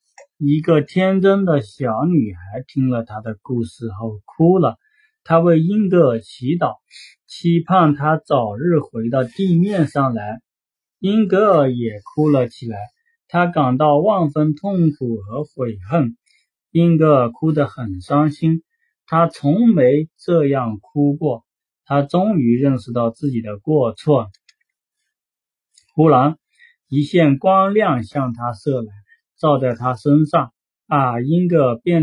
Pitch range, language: 130-175 Hz, Chinese